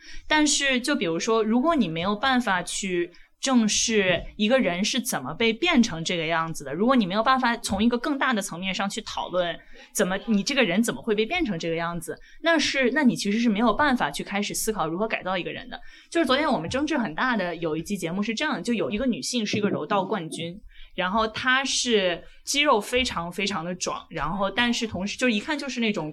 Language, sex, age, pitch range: Chinese, female, 20-39, 185-245 Hz